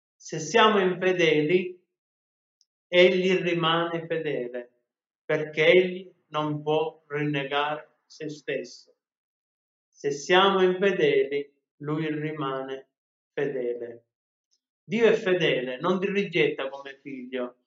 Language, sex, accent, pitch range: Italian, male, native, 150-180 Hz